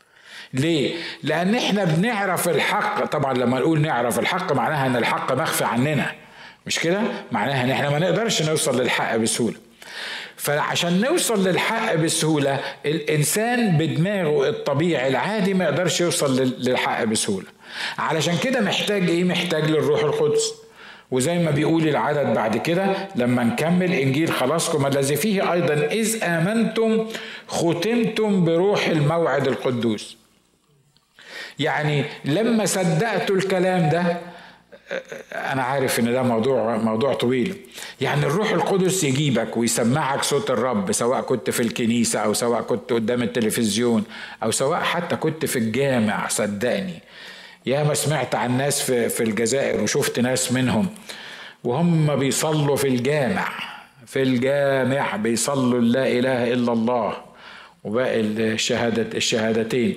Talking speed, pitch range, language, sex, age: 125 wpm, 130-185 Hz, Arabic, male, 50-69